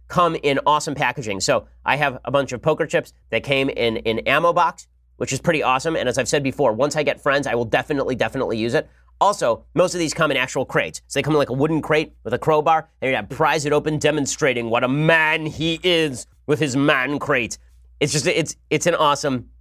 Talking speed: 240 wpm